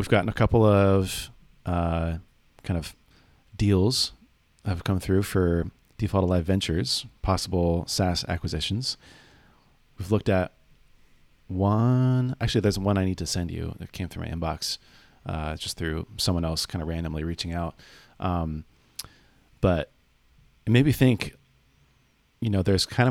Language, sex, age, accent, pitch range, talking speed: English, male, 30-49, American, 85-105 Hz, 150 wpm